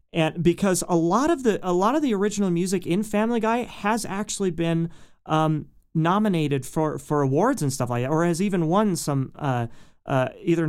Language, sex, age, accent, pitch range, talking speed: English, male, 30-49, American, 130-170 Hz, 195 wpm